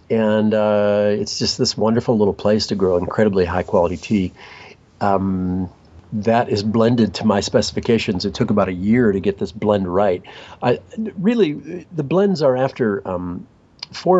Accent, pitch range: American, 95-120 Hz